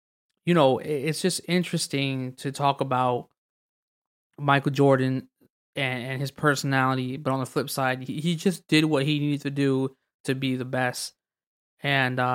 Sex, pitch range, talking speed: male, 130-155 Hz, 160 wpm